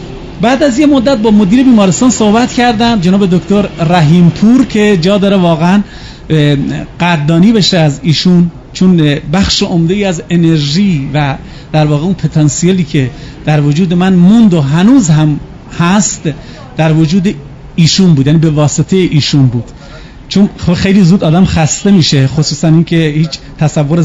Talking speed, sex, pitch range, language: 150 wpm, male, 155-205 Hz, Persian